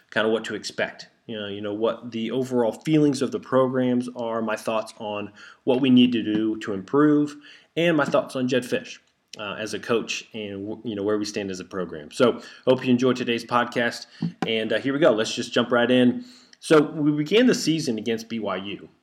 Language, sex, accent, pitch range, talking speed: English, male, American, 110-140 Hz, 220 wpm